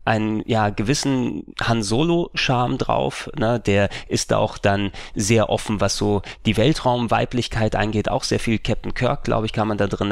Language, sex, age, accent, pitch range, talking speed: German, male, 30-49, German, 100-115 Hz, 165 wpm